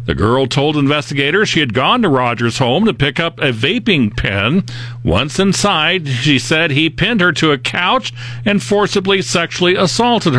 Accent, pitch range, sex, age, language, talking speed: American, 125-180 Hz, male, 50-69, English, 175 wpm